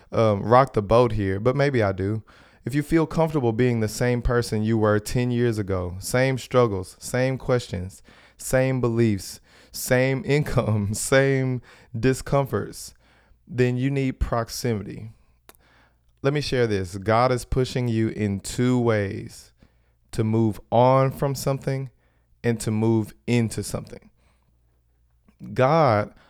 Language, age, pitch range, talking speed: English, 30-49, 105-125 Hz, 130 wpm